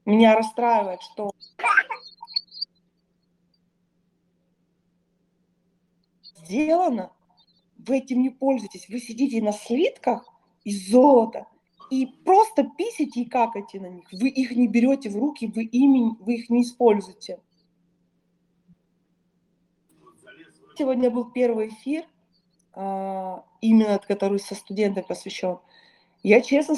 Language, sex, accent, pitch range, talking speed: Russian, female, native, 180-245 Hz, 100 wpm